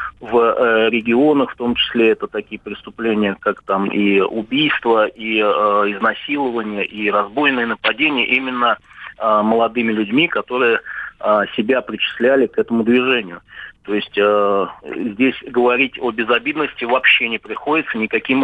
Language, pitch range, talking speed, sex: Russian, 110-130 Hz, 130 wpm, male